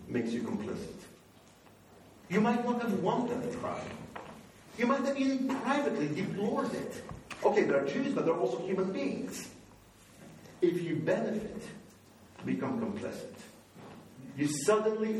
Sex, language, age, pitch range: male, English, 50-69, 180-240 Hz